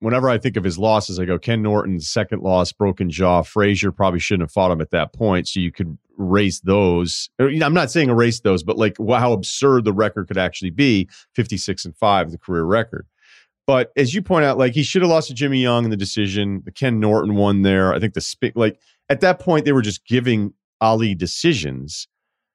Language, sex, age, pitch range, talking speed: English, male, 40-59, 100-135 Hz, 220 wpm